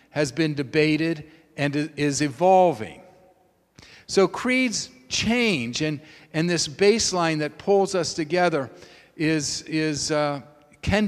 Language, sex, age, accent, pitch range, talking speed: English, male, 50-69, American, 150-190 Hz, 115 wpm